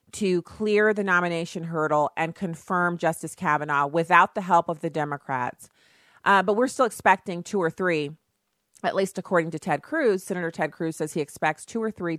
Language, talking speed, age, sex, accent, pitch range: English, 185 wpm, 30-49, female, American, 165-225 Hz